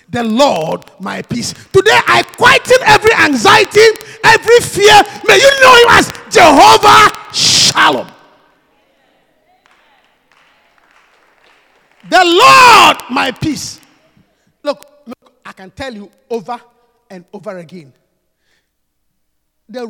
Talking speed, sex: 100 wpm, male